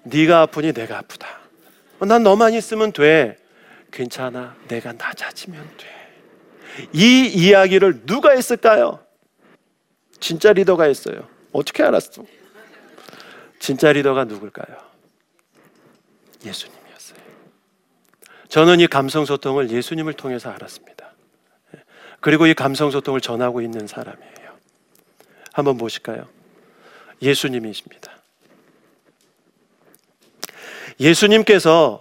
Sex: male